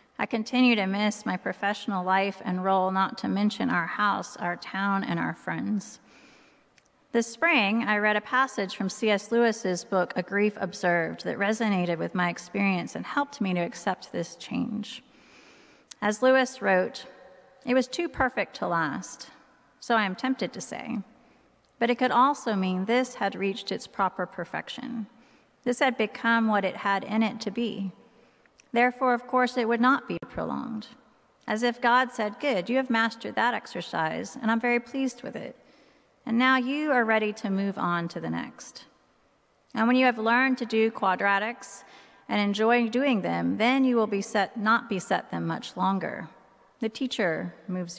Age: 30-49